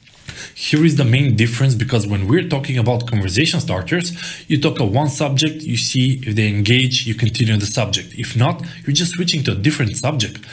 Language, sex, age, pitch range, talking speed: English, male, 20-39, 110-140 Hz, 200 wpm